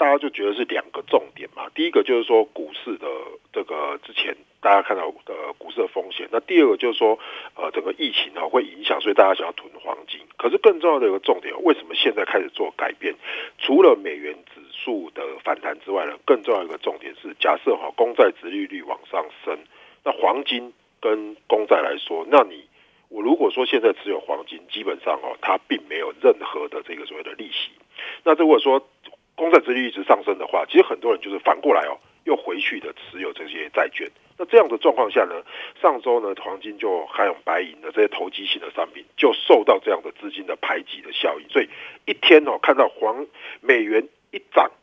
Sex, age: male, 50-69